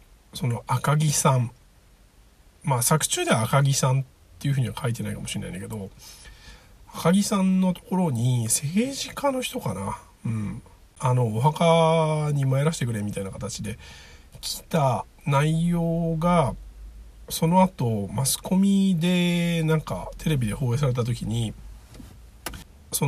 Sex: male